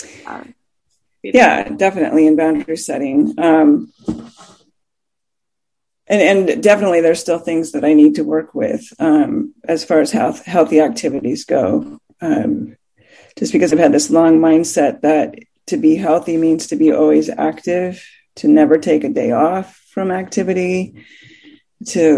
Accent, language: American, English